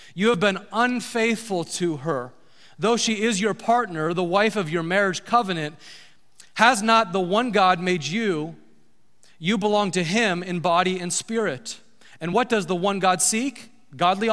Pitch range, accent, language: 185-235 Hz, American, English